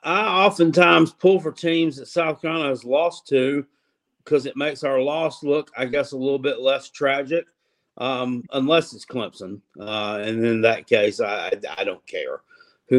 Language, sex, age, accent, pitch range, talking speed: English, male, 50-69, American, 115-140 Hz, 175 wpm